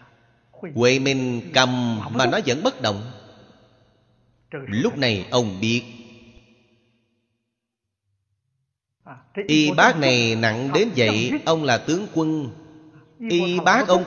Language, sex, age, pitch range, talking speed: Vietnamese, male, 30-49, 110-135 Hz, 105 wpm